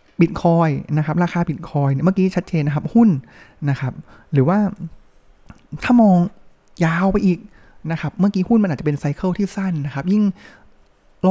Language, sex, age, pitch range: Thai, male, 20-39, 140-190 Hz